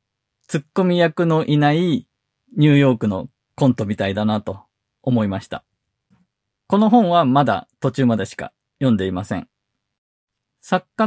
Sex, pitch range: male, 110-145 Hz